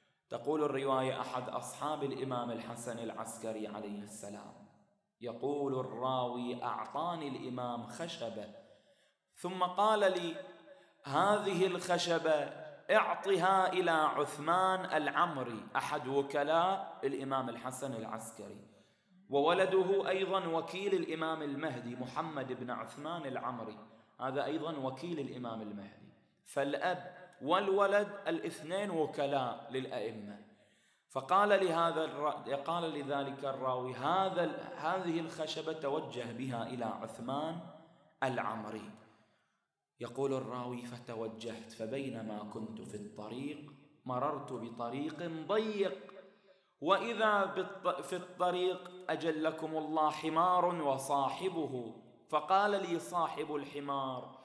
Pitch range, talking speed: 125-175 Hz, 90 wpm